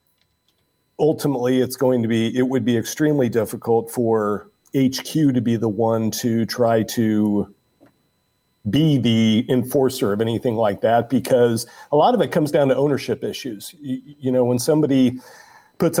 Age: 40-59